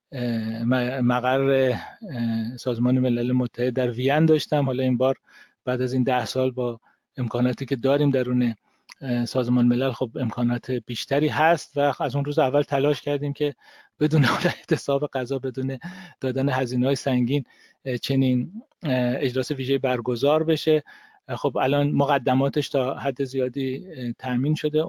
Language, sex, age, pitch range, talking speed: Persian, male, 40-59, 125-140 Hz, 135 wpm